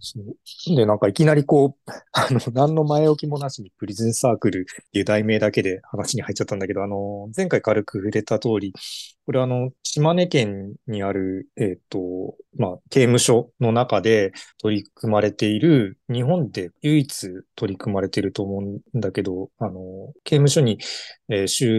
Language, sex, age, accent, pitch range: Japanese, male, 20-39, native, 100-130 Hz